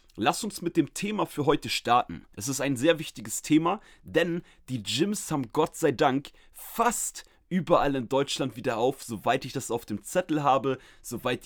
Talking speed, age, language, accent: 185 wpm, 30-49, German, German